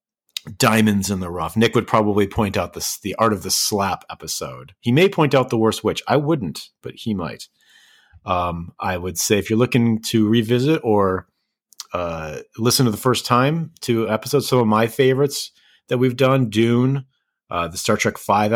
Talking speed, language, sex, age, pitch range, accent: 190 wpm, English, male, 30-49, 95-120 Hz, American